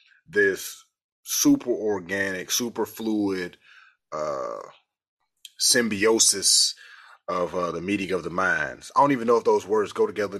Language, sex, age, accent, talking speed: English, male, 30-49, American, 135 wpm